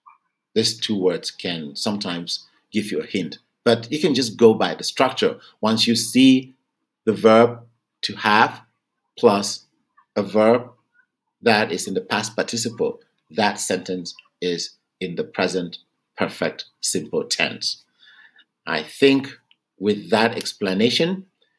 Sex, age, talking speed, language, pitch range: male, 50-69, 130 wpm, English, 95-120 Hz